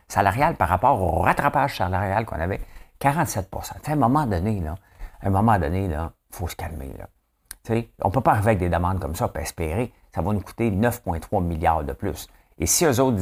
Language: English